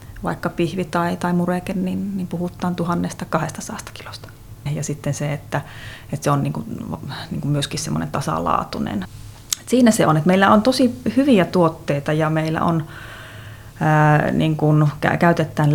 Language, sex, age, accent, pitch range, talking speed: Finnish, female, 30-49, native, 140-175 Hz, 150 wpm